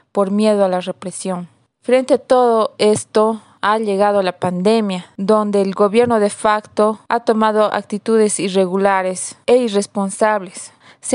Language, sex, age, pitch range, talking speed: Spanish, female, 20-39, 190-220 Hz, 135 wpm